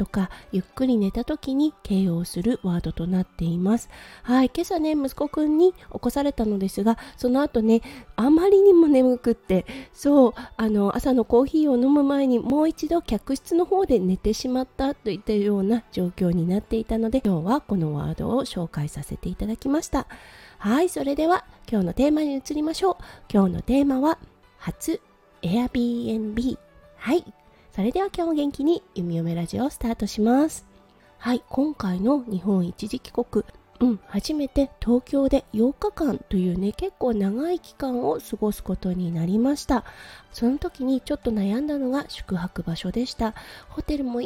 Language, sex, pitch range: Japanese, female, 210-280 Hz